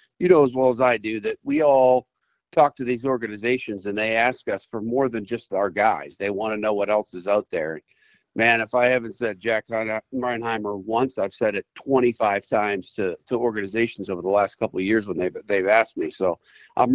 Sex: male